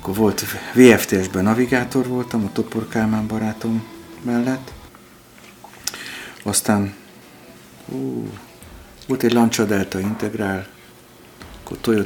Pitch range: 90-115 Hz